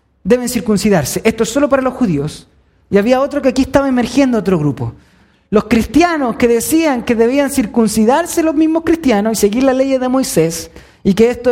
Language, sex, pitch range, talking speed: Spanish, male, 190-255 Hz, 190 wpm